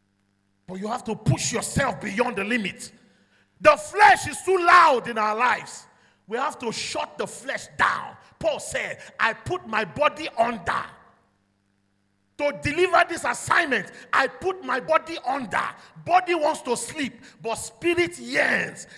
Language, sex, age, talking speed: English, male, 40-59, 150 wpm